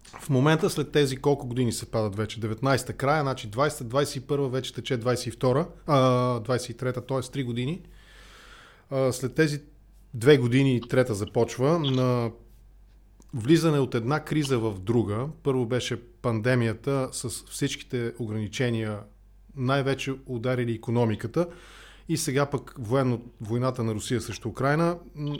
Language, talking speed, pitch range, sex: English, 125 wpm, 120-150 Hz, male